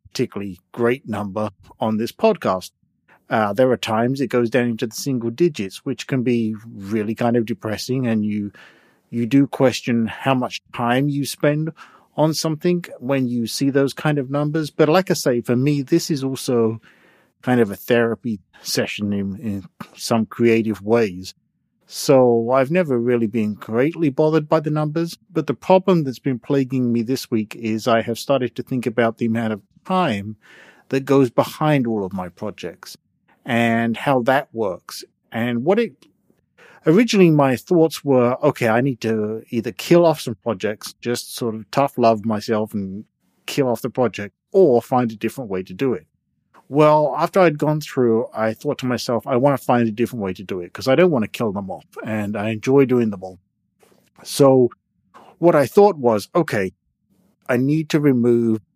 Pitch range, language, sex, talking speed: 110-140 Hz, English, male, 185 wpm